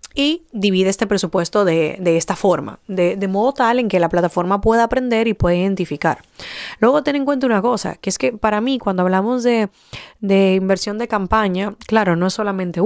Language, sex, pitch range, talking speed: Spanish, female, 180-225 Hz, 200 wpm